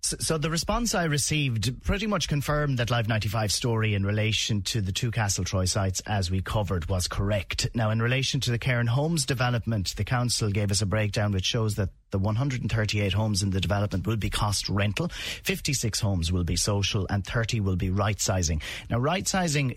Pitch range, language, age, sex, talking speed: 95-125 Hz, English, 30-49, male, 215 wpm